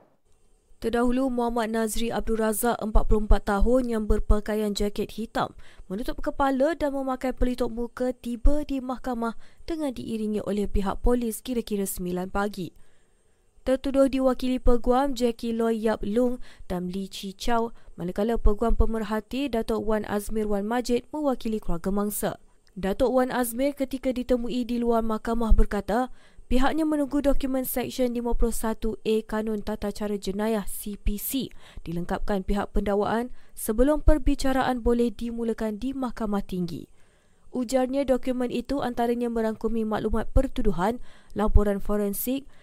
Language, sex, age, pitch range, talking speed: Malay, female, 20-39, 210-255 Hz, 125 wpm